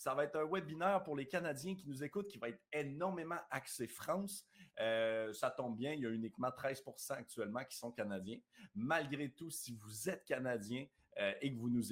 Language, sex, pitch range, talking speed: French, male, 115-160 Hz, 200 wpm